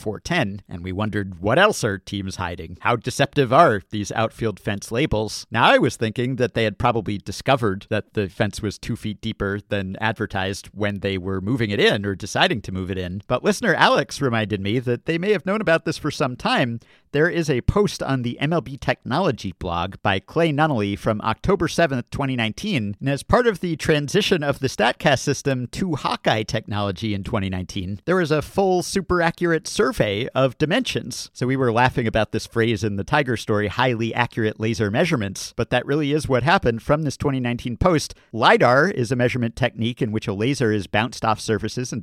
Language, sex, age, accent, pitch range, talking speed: English, male, 50-69, American, 105-140 Hz, 200 wpm